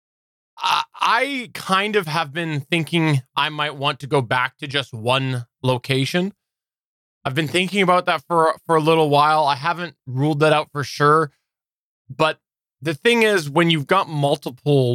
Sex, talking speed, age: male, 165 wpm, 20-39